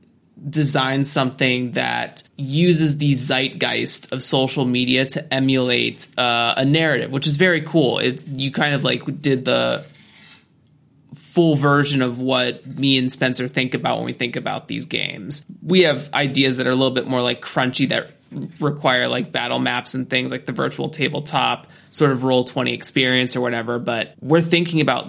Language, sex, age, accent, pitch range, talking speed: English, male, 20-39, American, 130-155 Hz, 175 wpm